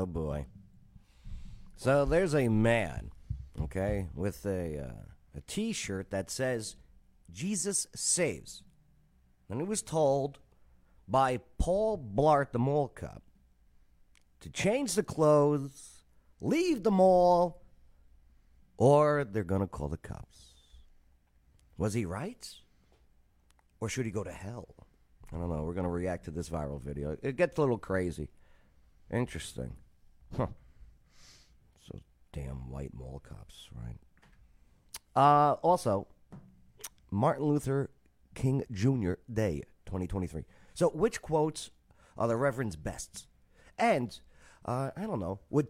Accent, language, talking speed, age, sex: American, English, 125 wpm, 50-69, male